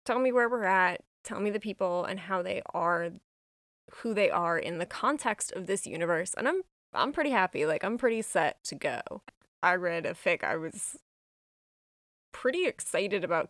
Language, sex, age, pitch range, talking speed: English, female, 20-39, 175-235 Hz, 185 wpm